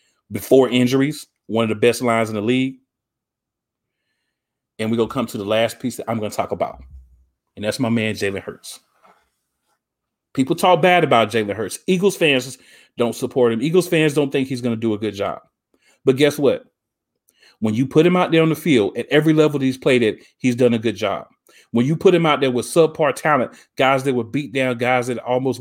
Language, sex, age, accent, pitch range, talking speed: English, male, 30-49, American, 115-145 Hz, 220 wpm